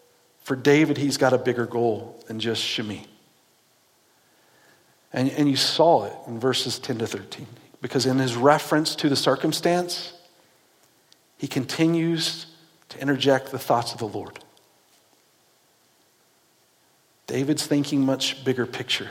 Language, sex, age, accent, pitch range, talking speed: English, male, 50-69, American, 125-155 Hz, 130 wpm